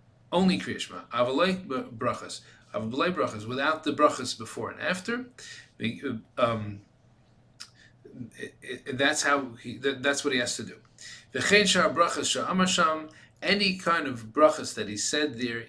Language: English